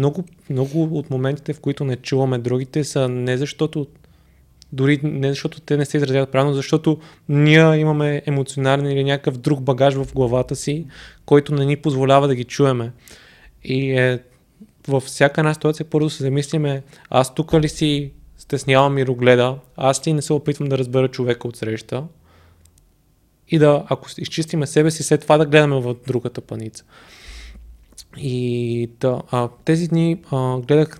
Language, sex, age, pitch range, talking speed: Bulgarian, male, 20-39, 125-150 Hz, 165 wpm